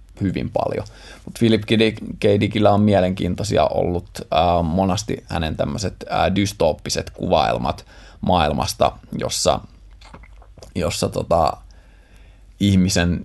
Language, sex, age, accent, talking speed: Finnish, male, 20-39, native, 85 wpm